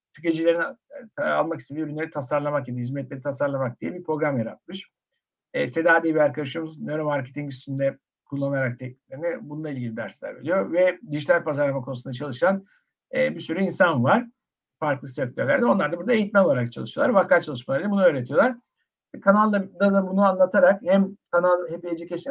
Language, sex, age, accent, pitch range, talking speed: Turkish, male, 60-79, native, 140-175 Hz, 155 wpm